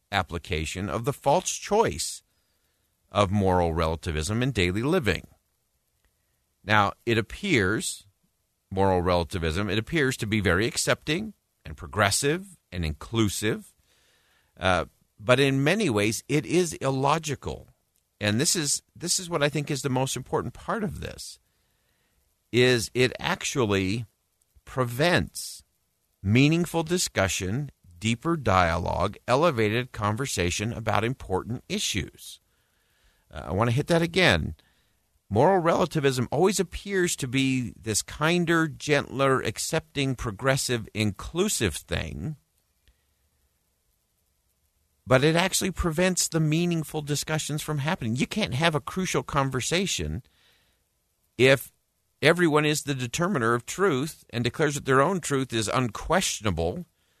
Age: 50-69